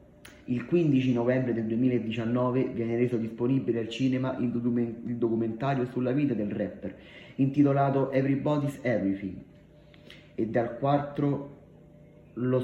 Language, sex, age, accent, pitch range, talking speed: Italian, male, 30-49, native, 110-130 Hz, 110 wpm